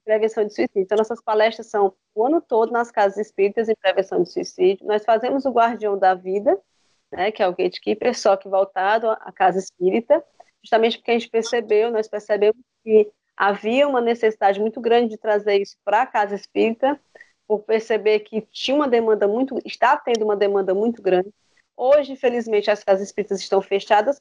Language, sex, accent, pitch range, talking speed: Portuguese, female, Brazilian, 195-235 Hz, 185 wpm